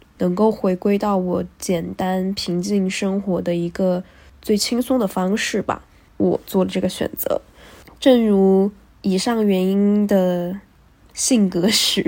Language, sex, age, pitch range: Chinese, female, 10-29, 190-225 Hz